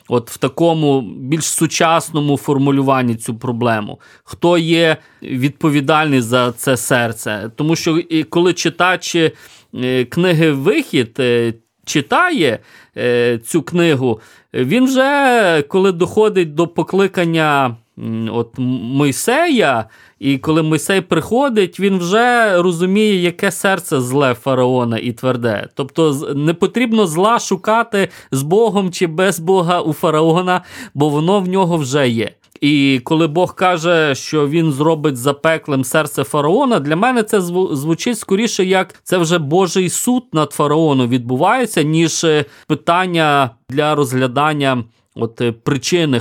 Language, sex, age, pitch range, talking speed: Ukrainian, male, 30-49, 135-185 Hz, 120 wpm